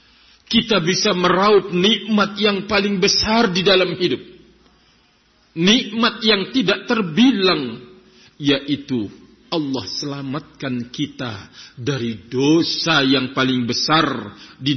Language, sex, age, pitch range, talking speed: Indonesian, male, 50-69, 125-200 Hz, 100 wpm